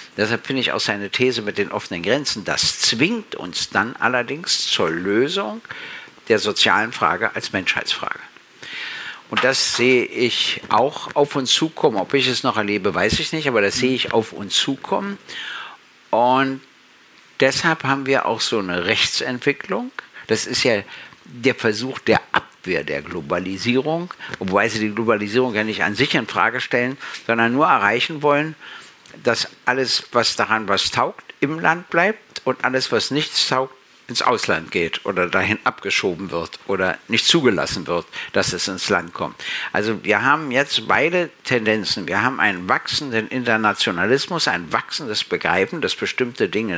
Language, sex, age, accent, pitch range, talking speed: German, male, 60-79, German, 110-140 Hz, 160 wpm